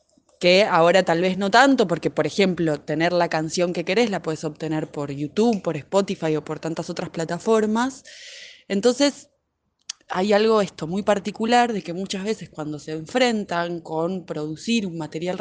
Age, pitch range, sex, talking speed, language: 20-39, 160-205 Hz, female, 170 wpm, Spanish